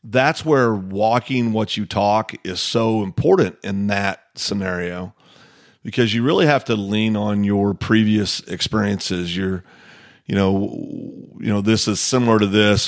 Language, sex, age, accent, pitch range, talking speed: English, male, 40-59, American, 100-115 Hz, 150 wpm